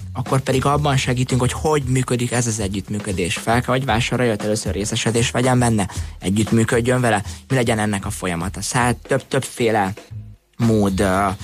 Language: Hungarian